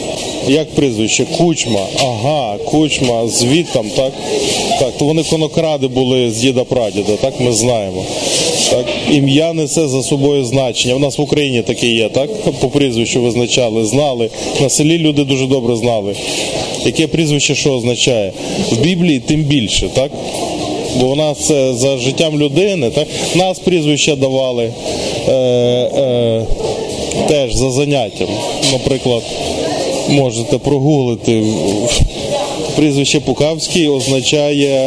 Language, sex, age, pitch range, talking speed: Ukrainian, male, 20-39, 120-150 Hz, 125 wpm